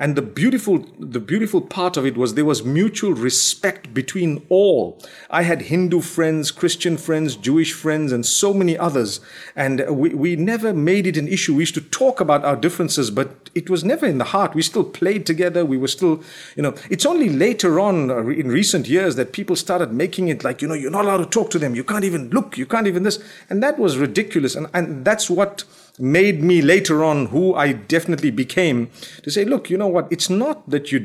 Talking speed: 220 wpm